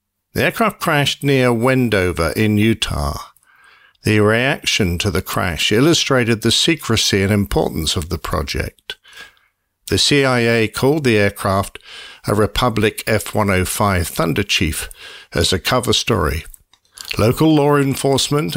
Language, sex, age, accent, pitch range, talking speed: English, male, 50-69, British, 95-130 Hz, 115 wpm